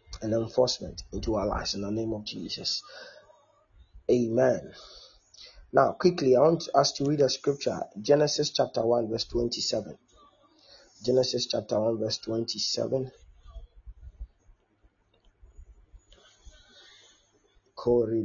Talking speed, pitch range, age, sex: 90 wpm, 105-140 Hz, 30-49, male